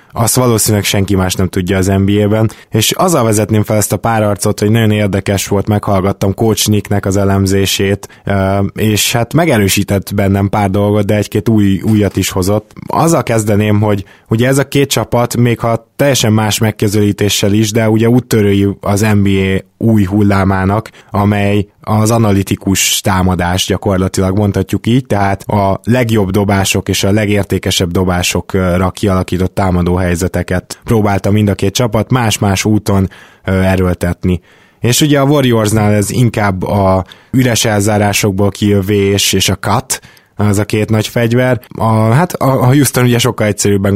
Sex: male